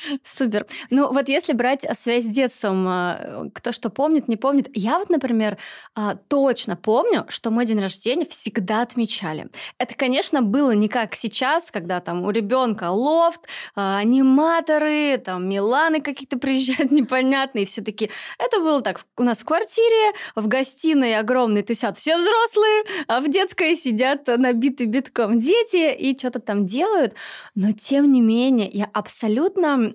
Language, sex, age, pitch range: Russian, female, 20-39, 205-265 Hz